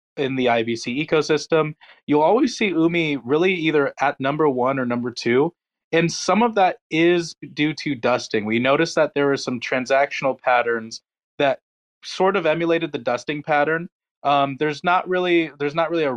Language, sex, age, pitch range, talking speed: English, male, 20-39, 125-155 Hz, 175 wpm